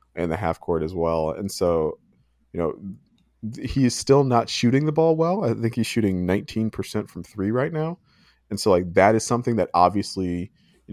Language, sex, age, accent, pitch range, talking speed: English, male, 20-39, American, 85-110 Hz, 200 wpm